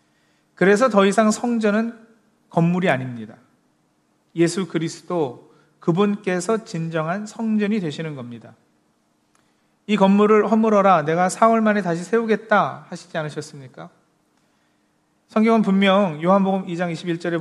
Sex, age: male, 40-59